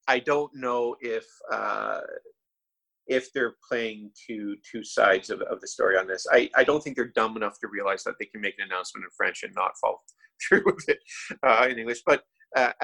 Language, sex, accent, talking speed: English, male, American, 210 wpm